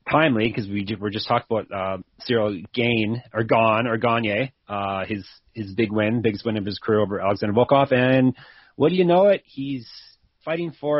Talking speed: 190 wpm